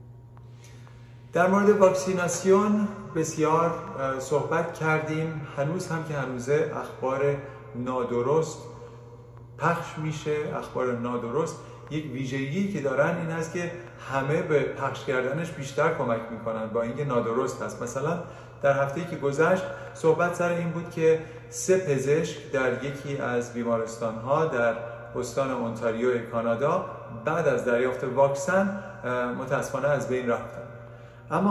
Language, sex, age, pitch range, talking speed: Persian, male, 40-59, 120-160 Hz, 120 wpm